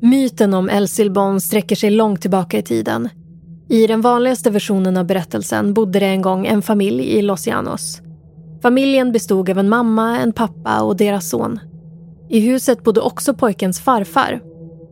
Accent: native